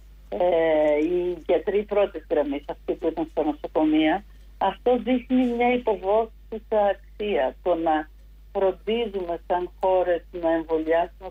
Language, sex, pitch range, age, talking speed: Greek, female, 165-205 Hz, 50-69, 120 wpm